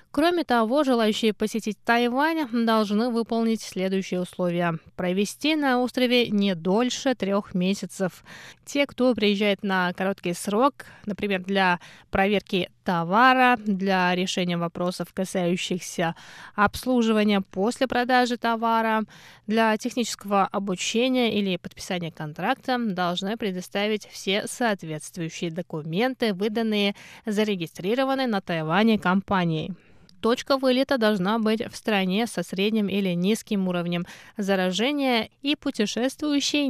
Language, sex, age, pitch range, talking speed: Russian, female, 20-39, 185-235 Hz, 105 wpm